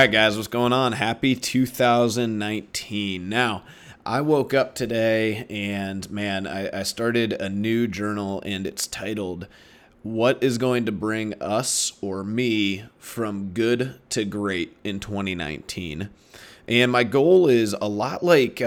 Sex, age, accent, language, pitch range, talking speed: male, 30-49, American, English, 100-120 Hz, 140 wpm